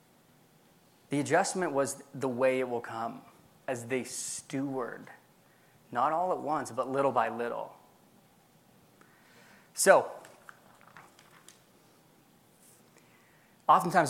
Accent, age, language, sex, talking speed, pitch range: American, 20-39, English, male, 90 wpm, 125-150 Hz